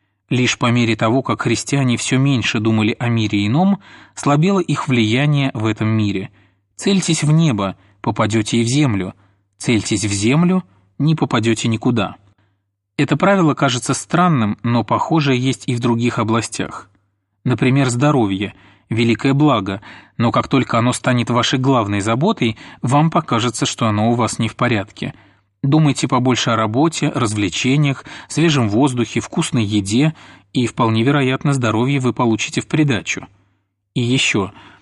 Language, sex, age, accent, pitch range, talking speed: Russian, male, 30-49, native, 110-135 Hz, 140 wpm